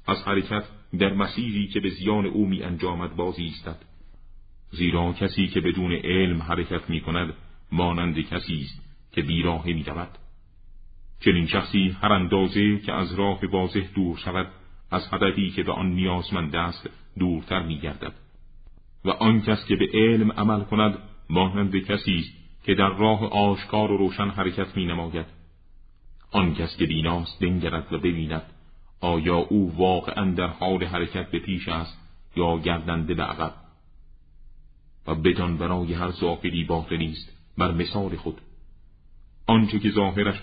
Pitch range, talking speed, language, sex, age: 85-100 Hz, 145 wpm, Persian, male, 40-59